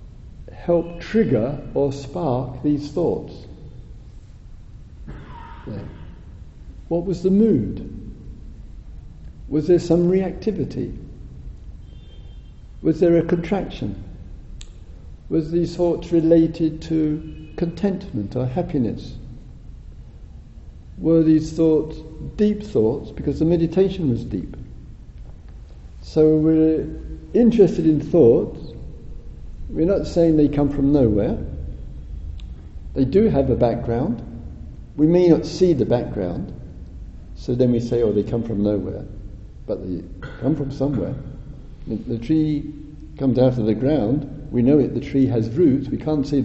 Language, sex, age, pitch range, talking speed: English, male, 60-79, 95-160 Hz, 120 wpm